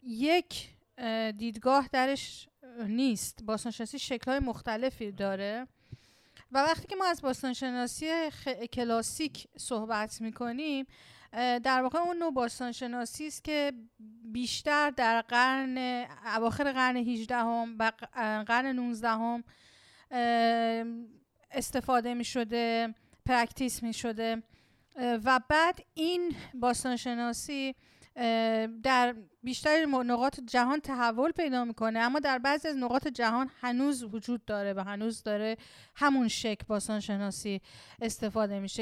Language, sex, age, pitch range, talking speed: Persian, female, 40-59, 225-265 Hz, 100 wpm